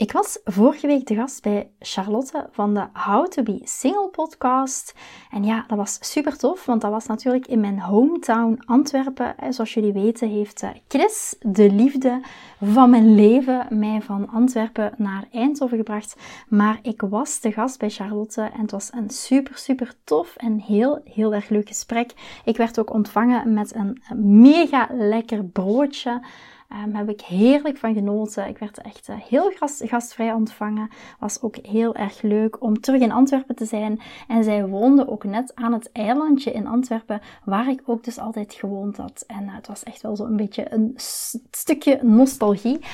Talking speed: 180 wpm